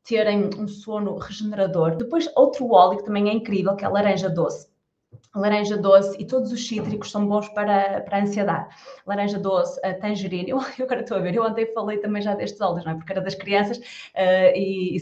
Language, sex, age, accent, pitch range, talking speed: Portuguese, female, 20-39, Brazilian, 180-210 Hz, 220 wpm